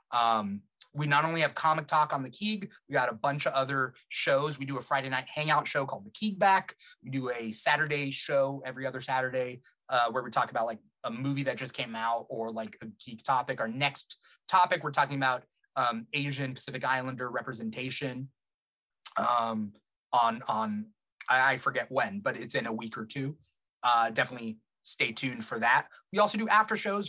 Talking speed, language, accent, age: 195 wpm, English, American, 30-49